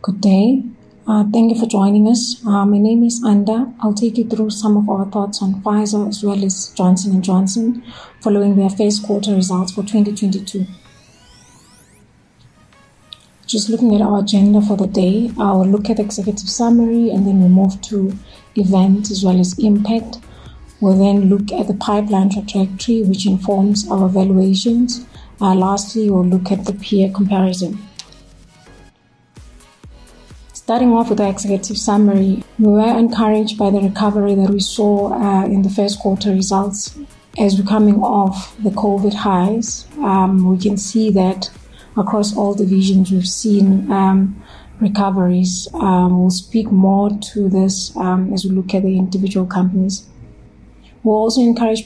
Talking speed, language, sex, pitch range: 155 wpm, English, female, 195-215 Hz